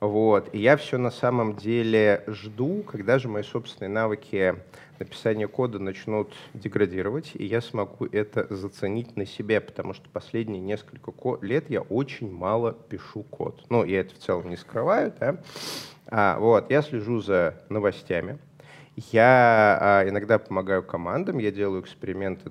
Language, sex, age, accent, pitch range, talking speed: Russian, male, 20-39, native, 105-140 Hz, 150 wpm